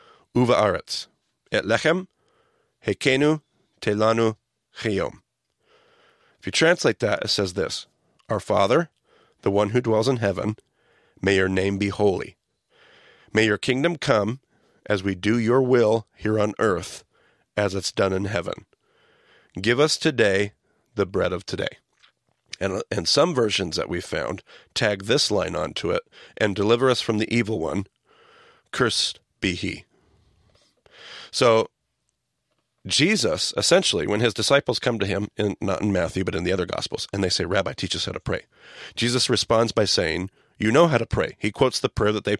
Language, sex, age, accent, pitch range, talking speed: English, male, 40-59, American, 105-120 Hz, 155 wpm